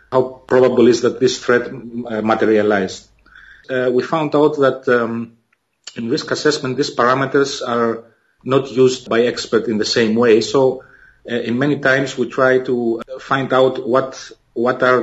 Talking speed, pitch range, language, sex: 160 wpm, 120-135 Hz, English, male